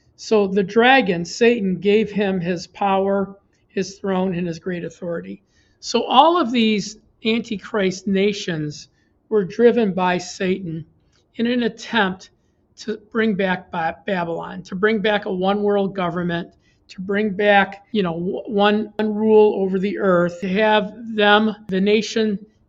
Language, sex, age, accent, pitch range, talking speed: English, male, 50-69, American, 185-215 Hz, 145 wpm